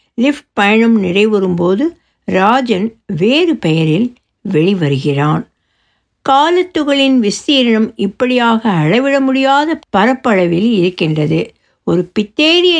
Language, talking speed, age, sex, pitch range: Tamil, 75 wpm, 60-79, female, 170-245 Hz